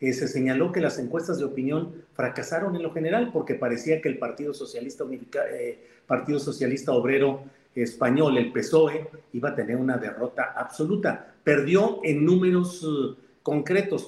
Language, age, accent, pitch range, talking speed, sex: Spanish, 50-69, Mexican, 130-170 Hz, 155 wpm, male